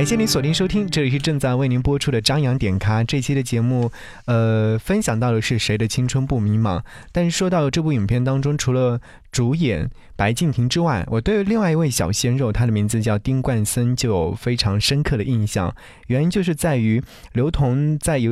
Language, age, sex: Chinese, 20-39, male